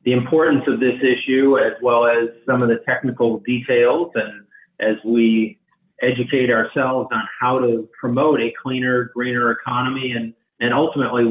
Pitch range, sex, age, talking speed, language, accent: 115-135 Hz, male, 40-59, 155 wpm, English, American